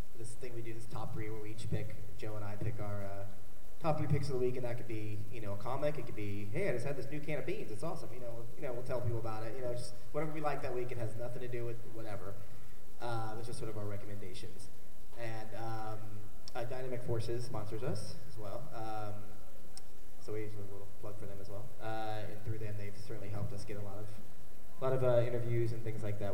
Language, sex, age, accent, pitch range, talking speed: English, male, 20-39, American, 105-120 Hz, 265 wpm